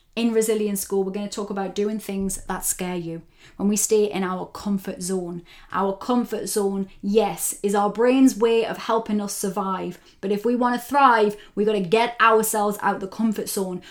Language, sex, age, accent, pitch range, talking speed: English, female, 20-39, British, 195-220 Hz, 205 wpm